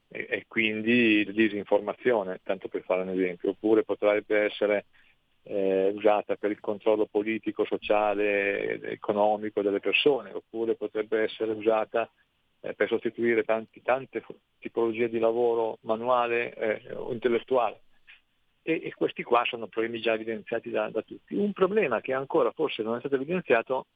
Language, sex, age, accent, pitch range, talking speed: Italian, male, 40-59, native, 105-135 Hz, 150 wpm